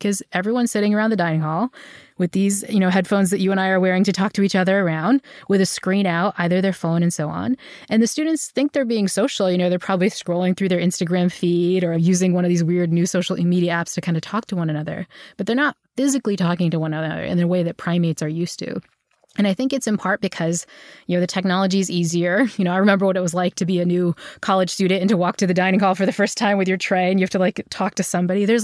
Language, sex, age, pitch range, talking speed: English, female, 20-39, 175-205 Hz, 280 wpm